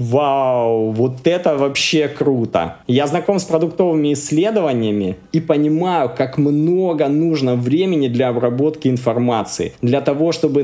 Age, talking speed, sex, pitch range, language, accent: 20-39, 125 wpm, male, 125-155 Hz, Russian, native